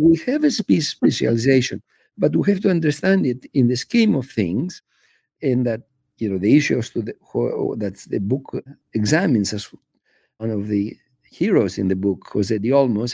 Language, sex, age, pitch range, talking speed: English, male, 50-69, 120-160 Hz, 175 wpm